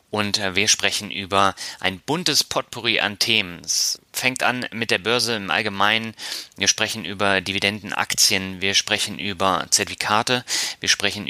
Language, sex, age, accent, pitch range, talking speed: German, male, 30-49, German, 95-110 Hz, 145 wpm